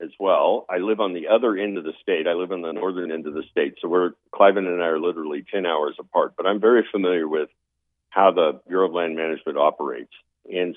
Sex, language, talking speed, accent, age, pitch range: male, English, 240 wpm, American, 50-69, 80-105 Hz